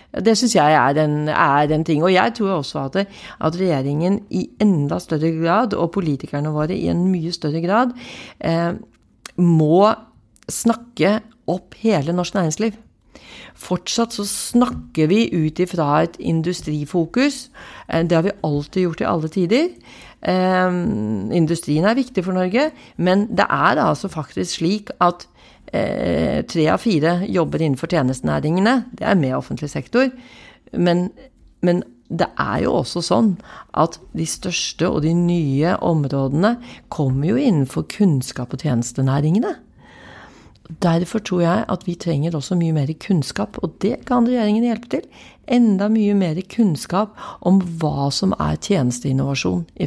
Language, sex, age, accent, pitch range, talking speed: English, female, 40-59, Swedish, 155-210 Hz, 150 wpm